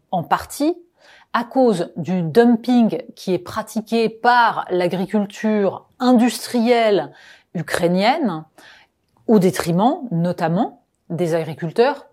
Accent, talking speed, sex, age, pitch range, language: French, 90 wpm, female, 30-49, 175-225 Hz, French